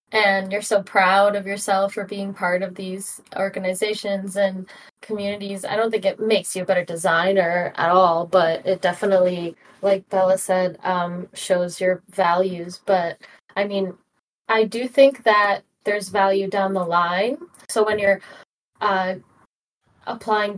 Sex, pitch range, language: female, 190-215 Hz, English